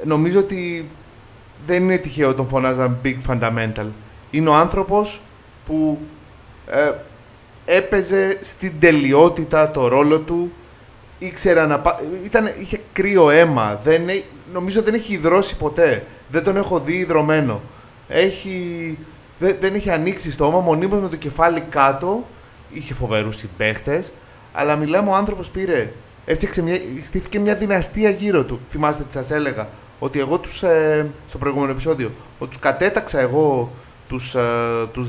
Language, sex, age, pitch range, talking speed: Greek, male, 30-49, 130-185 Hz, 140 wpm